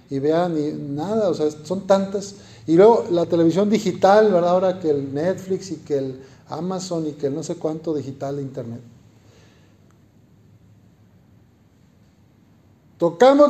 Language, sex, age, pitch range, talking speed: Spanish, male, 50-69, 135-185 Hz, 140 wpm